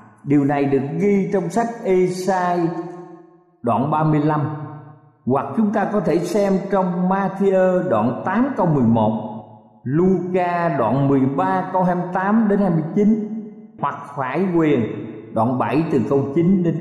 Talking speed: 130 wpm